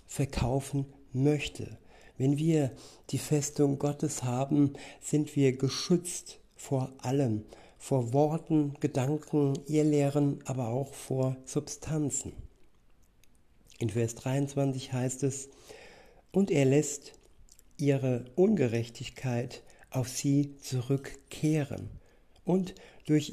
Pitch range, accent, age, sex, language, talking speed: 125-145 Hz, German, 60-79, male, German, 95 wpm